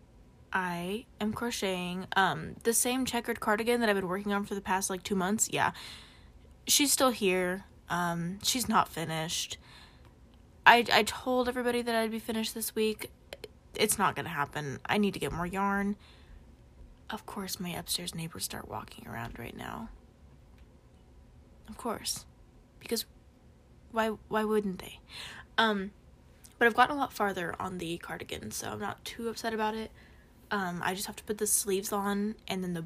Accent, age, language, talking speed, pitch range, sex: American, 10-29, English, 170 wpm, 185-220 Hz, female